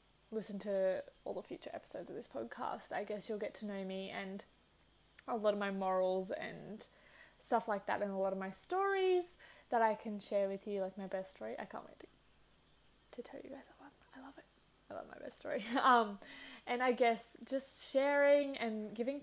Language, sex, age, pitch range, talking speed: English, female, 10-29, 195-230 Hz, 210 wpm